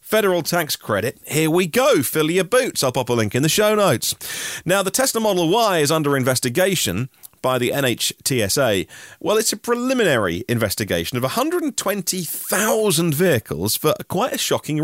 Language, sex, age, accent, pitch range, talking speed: English, male, 40-59, British, 105-160 Hz, 160 wpm